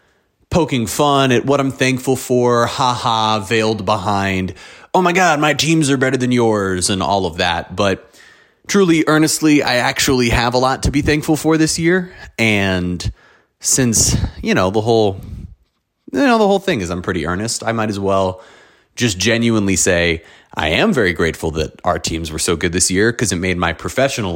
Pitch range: 85-120 Hz